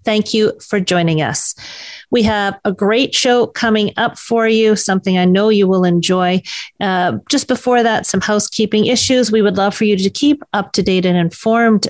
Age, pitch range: 40-59, 175-220 Hz